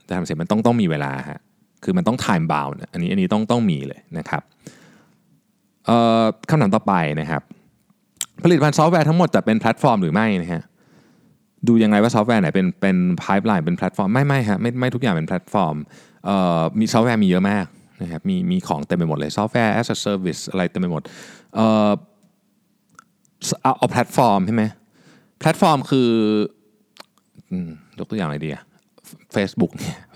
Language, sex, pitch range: Thai, male, 95-160 Hz